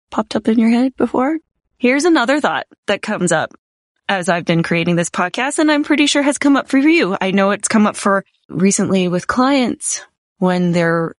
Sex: female